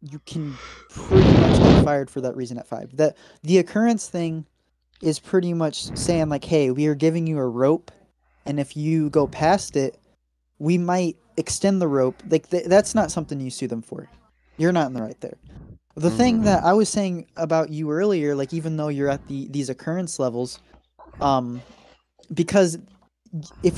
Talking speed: 185 wpm